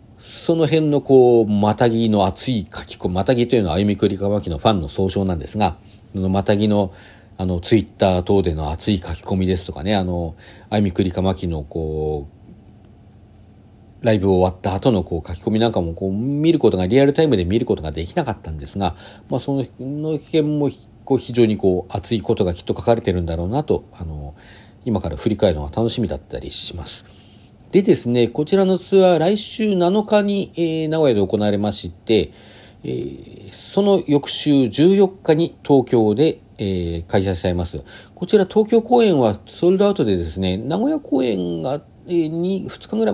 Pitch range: 95-145 Hz